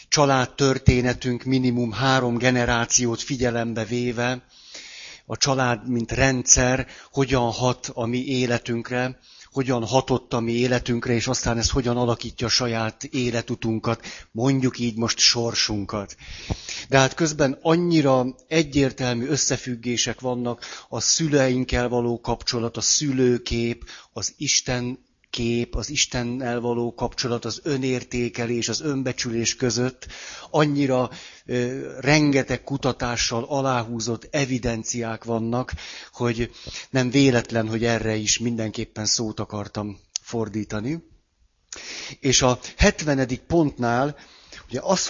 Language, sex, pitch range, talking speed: Hungarian, male, 115-135 Hz, 110 wpm